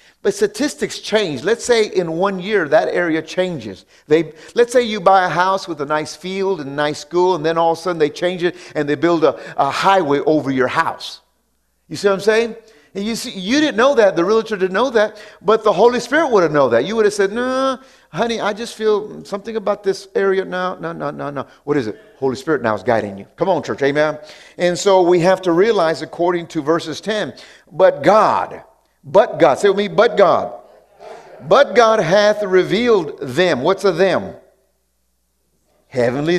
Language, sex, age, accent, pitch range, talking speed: English, male, 50-69, American, 155-225 Hz, 215 wpm